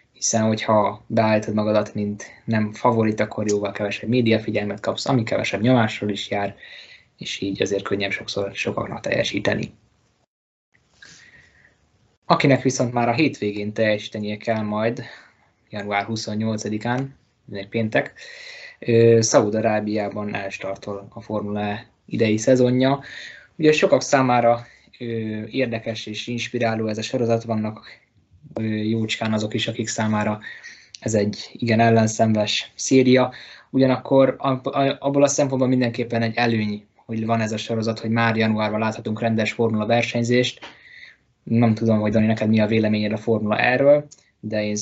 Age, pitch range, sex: 20-39, 105-120 Hz, male